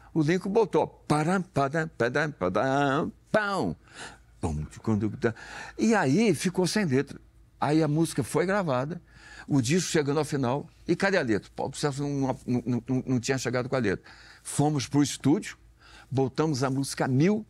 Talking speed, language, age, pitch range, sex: 140 wpm, Portuguese, 60-79, 115-155 Hz, male